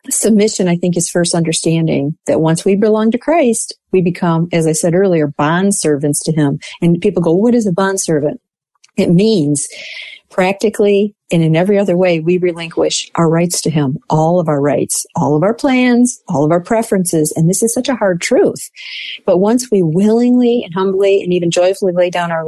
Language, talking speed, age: English, 200 wpm, 40-59